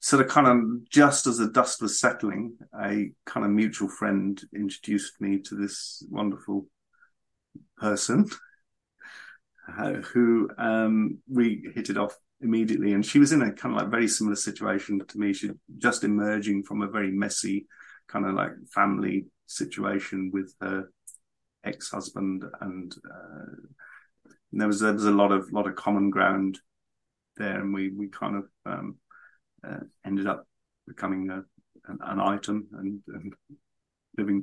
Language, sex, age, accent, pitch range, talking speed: English, male, 30-49, British, 100-115 Hz, 155 wpm